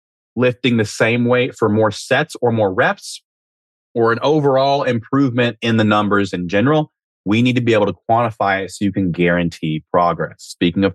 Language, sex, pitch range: English, male, 105-135 Hz